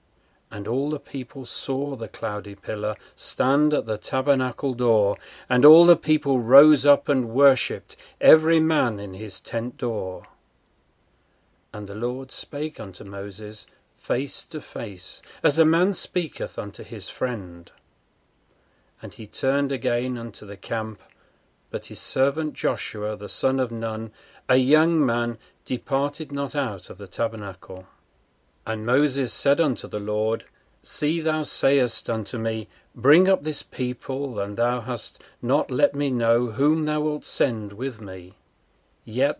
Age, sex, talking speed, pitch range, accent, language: 40-59, male, 145 wpm, 110-145 Hz, British, English